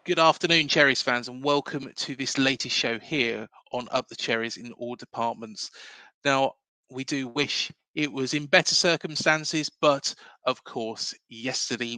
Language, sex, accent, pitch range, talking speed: English, male, British, 125-165 Hz, 155 wpm